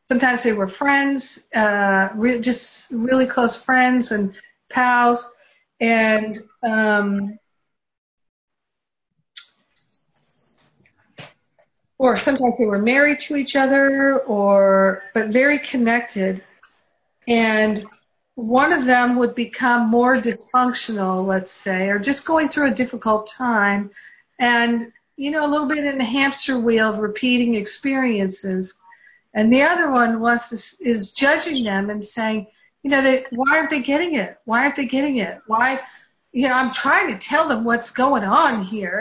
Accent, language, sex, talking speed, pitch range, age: American, English, female, 140 wpm, 215-275 Hz, 50-69